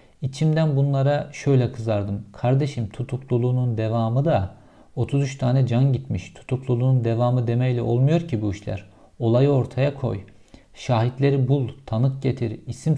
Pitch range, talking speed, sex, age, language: 110-135 Hz, 125 wpm, male, 50-69, Turkish